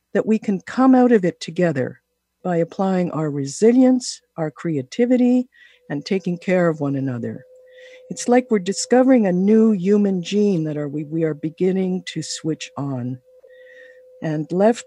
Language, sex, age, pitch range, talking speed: English, female, 60-79, 160-245 Hz, 155 wpm